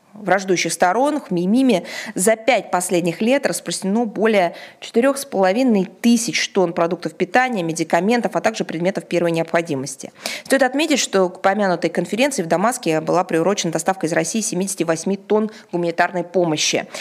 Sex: female